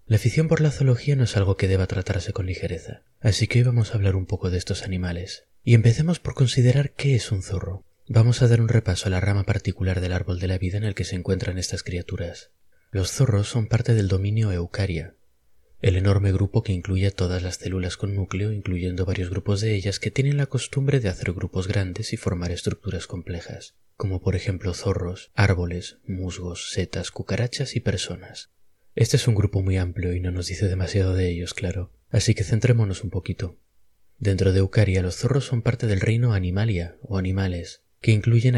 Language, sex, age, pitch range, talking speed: Spanish, male, 30-49, 95-110 Hz, 205 wpm